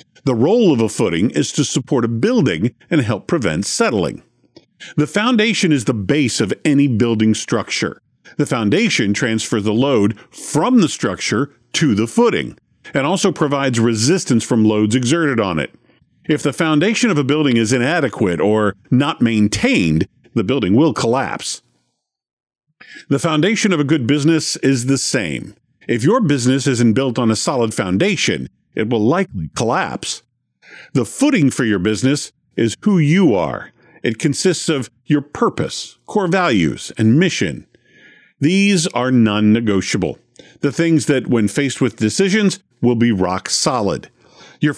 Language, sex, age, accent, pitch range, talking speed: English, male, 50-69, American, 115-160 Hz, 150 wpm